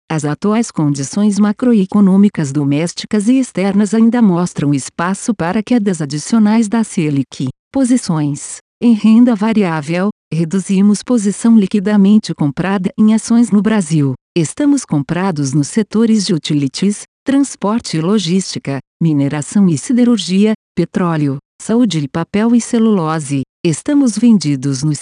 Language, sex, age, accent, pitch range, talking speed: Portuguese, female, 50-69, Brazilian, 155-215 Hz, 115 wpm